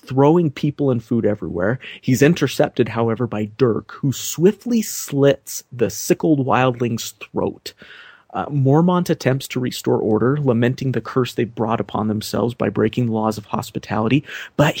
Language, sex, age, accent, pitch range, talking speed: English, male, 30-49, American, 115-150 Hz, 150 wpm